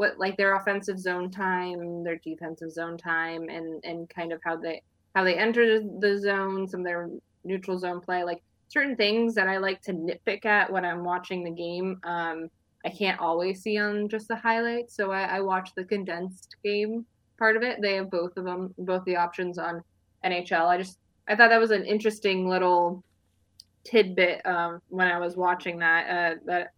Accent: American